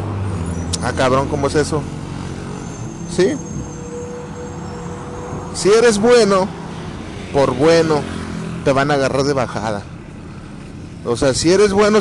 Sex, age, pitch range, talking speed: male, 30-49, 125-170 Hz, 115 wpm